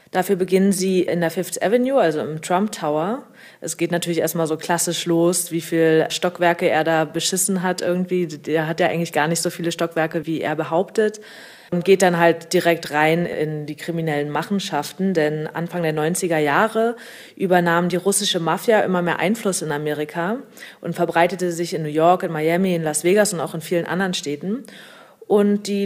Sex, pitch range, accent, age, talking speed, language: female, 165-190 Hz, German, 30-49, 190 wpm, German